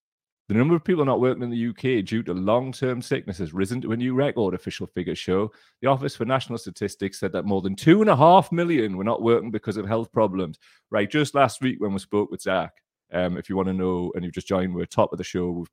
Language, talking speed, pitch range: English, 250 wpm, 95-115 Hz